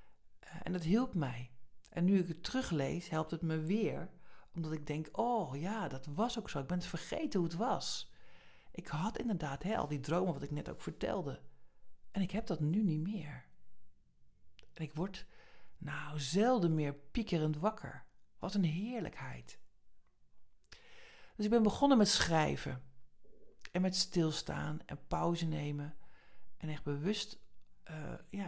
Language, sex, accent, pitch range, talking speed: Dutch, male, Dutch, 145-180 Hz, 160 wpm